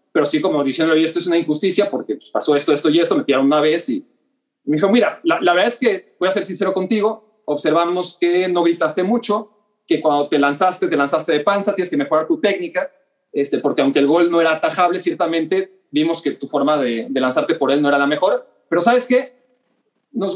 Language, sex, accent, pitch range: Spanish, male, Mexican, 160-225 Hz